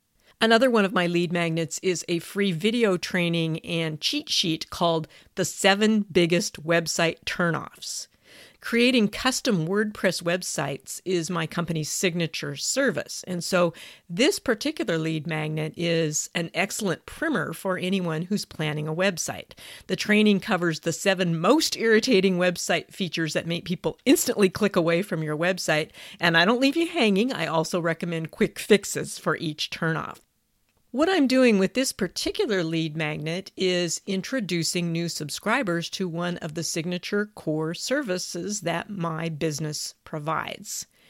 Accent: American